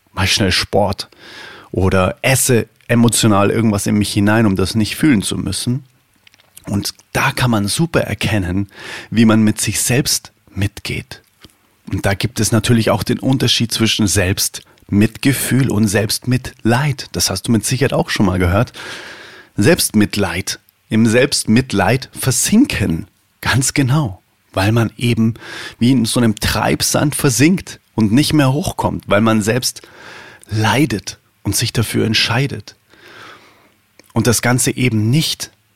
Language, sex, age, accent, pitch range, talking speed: German, male, 30-49, German, 105-125 Hz, 140 wpm